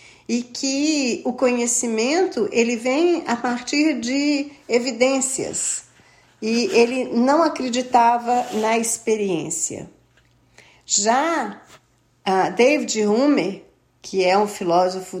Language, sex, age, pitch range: Portuguese, female, 40-59, 180-250 Hz